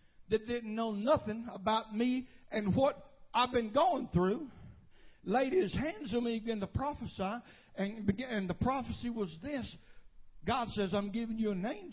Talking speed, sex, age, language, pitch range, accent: 170 wpm, male, 60-79, English, 220-315 Hz, American